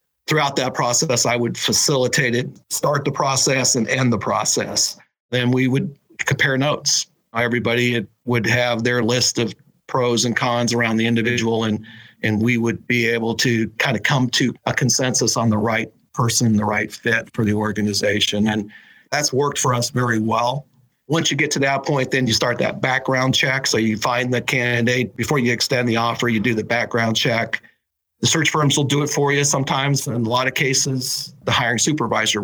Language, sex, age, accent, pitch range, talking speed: English, male, 40-59, American, 115-130 Hz, 195 wpm